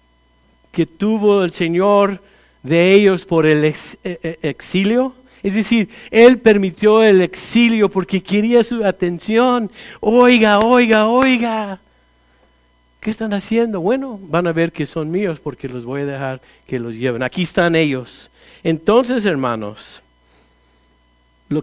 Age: 50-69